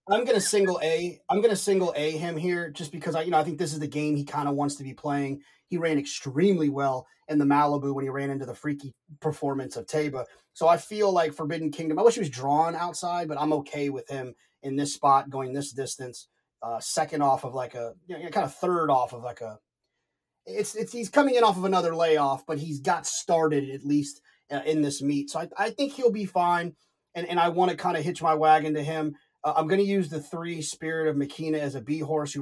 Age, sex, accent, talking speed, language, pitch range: 30-49, male, American, 250 wpm, English, 140-170 Hz